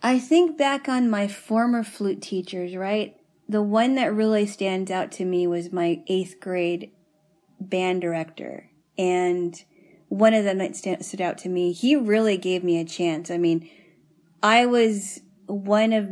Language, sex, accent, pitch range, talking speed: English, female, American, 175-205 Hz, 165 wpm